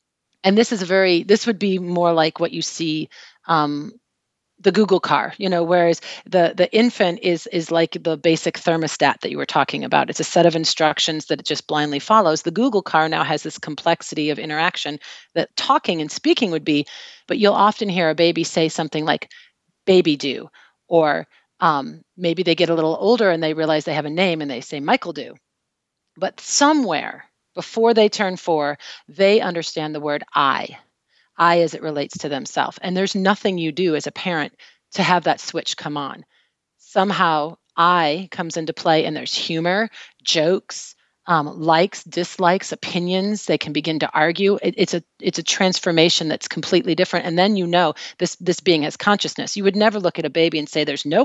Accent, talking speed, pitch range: American, 195 wpm, 155-190 Hz